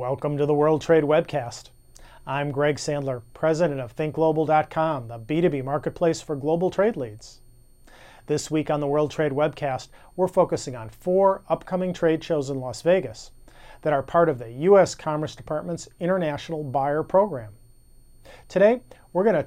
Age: 40-59